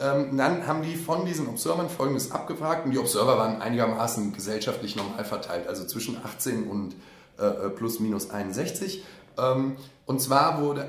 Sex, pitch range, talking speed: male, 110-140 Hz, 150 wpm